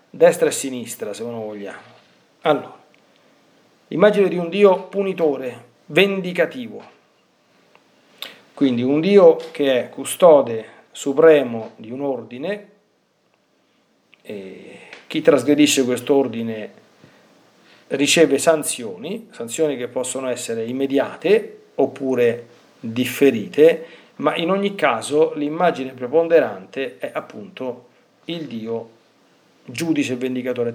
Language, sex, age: Italian, male, 50-69